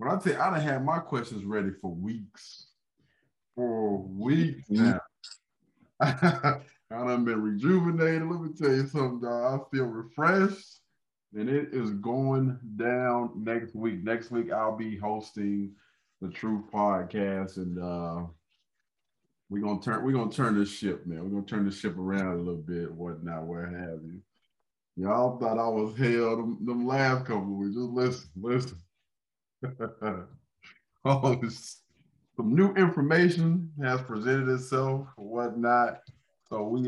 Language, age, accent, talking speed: English, 20-39, American, 145 wpm